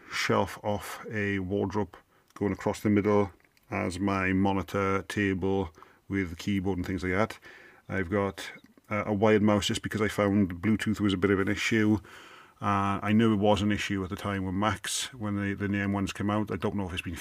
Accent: British